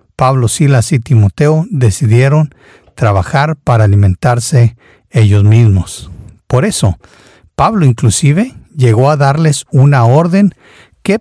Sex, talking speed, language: male, 105 wpm, Spanish